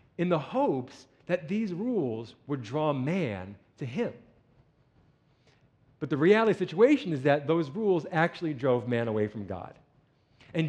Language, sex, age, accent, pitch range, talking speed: English, male, 40-59, American, 130-195 Hz, 155 wpm